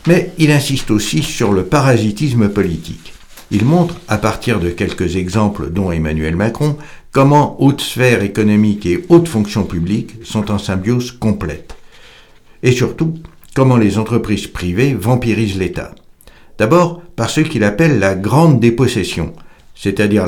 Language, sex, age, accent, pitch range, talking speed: French, male, 60-79, French, 95-125 Hz, 140 wpm